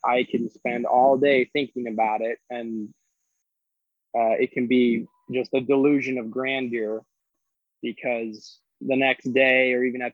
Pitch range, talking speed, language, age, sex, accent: 115-130 Hz, 150 wpm, English, 20-39, male, American